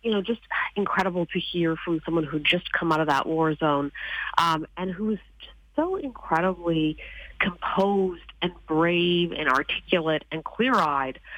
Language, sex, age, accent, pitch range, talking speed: English, female, 40-59, American, 155-190 Hz, 150 wpm